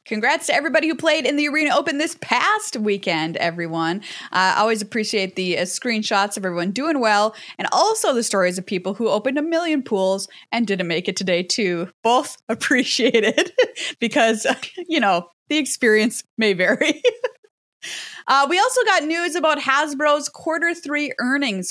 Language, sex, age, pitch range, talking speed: English, female, 20-39, 185-290 Hz, 170 wpm